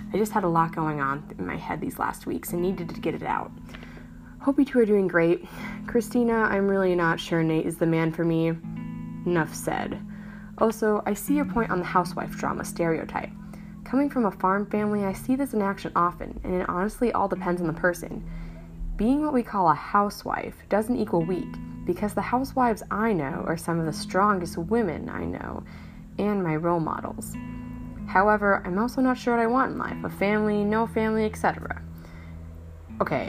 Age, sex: 20-39, female